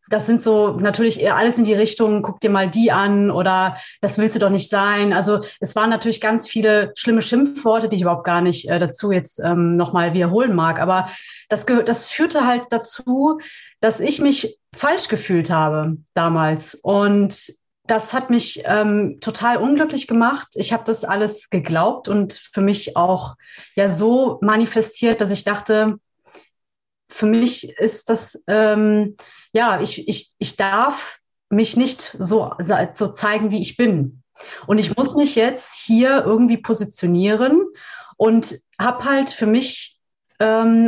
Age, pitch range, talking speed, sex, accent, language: 30-49, 200-230 Hz, 160 wpm, female, German, German